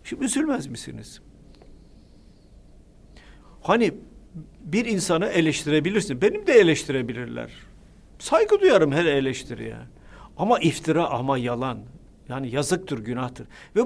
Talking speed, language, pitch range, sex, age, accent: 95 wpm, Turkish, 135-205 Hz, male, 50-69, native